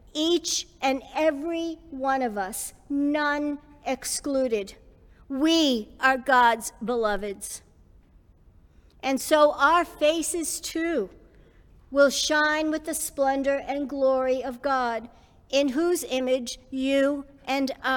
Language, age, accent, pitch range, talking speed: English, 50-69, American, 225-290 Hz, 105 wpm